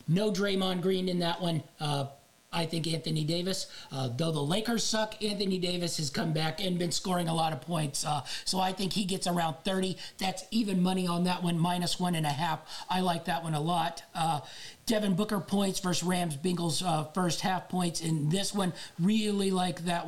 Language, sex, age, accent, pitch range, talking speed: English, male, 40-59, American, 165-190 Hz, 210 wpm